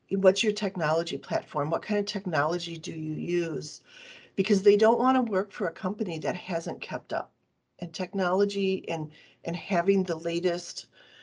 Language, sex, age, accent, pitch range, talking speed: English, female, 40-59, American, 165-210 Hz, 165 wpm